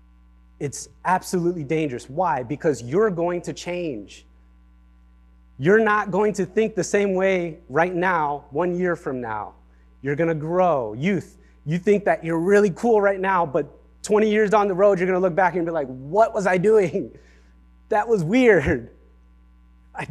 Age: 30-49